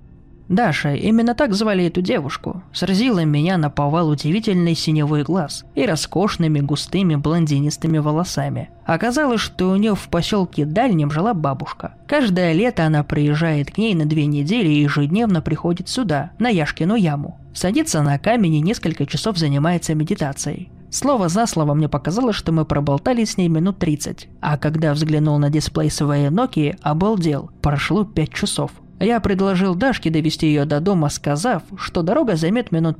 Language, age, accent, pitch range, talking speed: Russian, 20-39, native, 150-200 Hz, 155 wpm